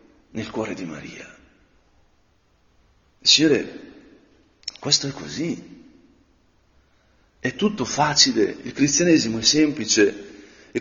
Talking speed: 90 wpm